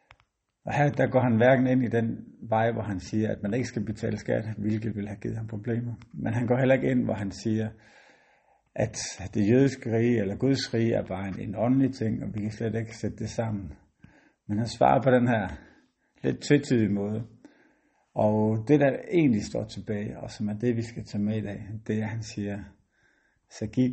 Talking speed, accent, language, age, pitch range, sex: 220 wpm, native, Danish, 60-79, 100-120 Hz, male